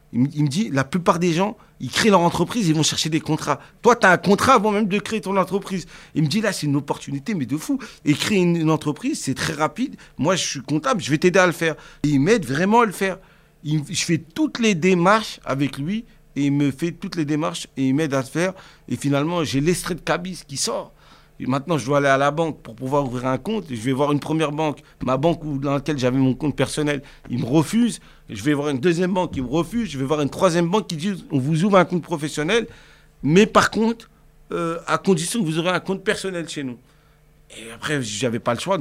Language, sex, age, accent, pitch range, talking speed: French, male, 50-69, French, 140-185 Hz, 260 wpm